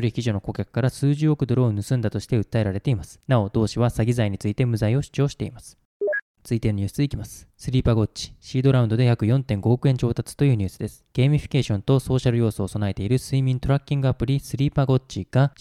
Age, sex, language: 20-39, male, Japanese